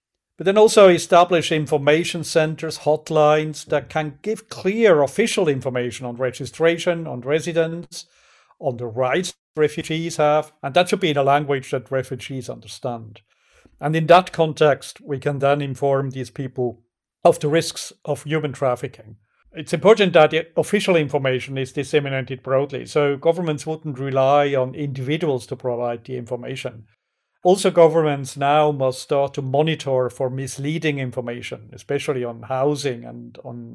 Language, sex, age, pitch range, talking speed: English, male, 50-69, 130-160 Hz, 145 wpm